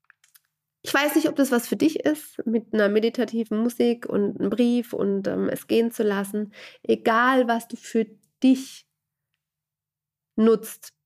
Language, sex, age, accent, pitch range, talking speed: German, female, 30-49, German, 205-245 Hz, 150 wpm